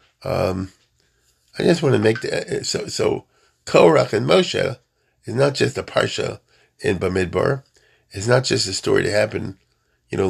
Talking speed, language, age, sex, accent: 165 wpm, English, 40-59, male, American